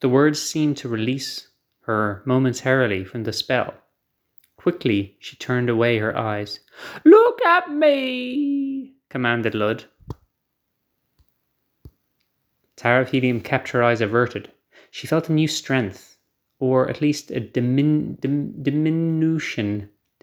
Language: English